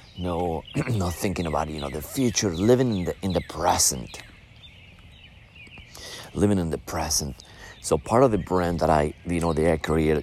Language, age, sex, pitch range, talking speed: English, 40-59, male, 80-105 Hz, 170 wpm